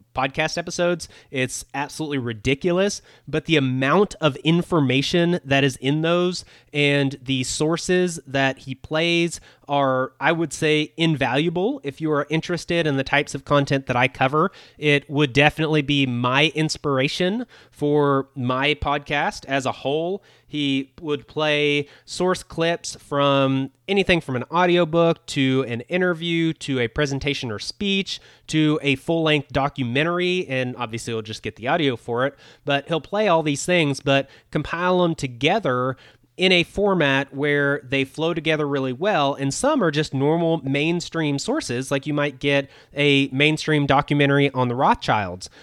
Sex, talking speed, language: male, 155 wpm, English